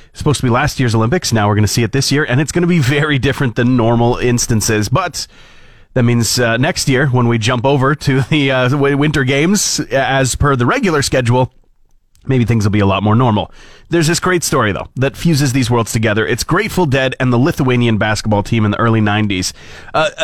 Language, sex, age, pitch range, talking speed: English, male, 30-49, 120-155 Hz, 220 wpm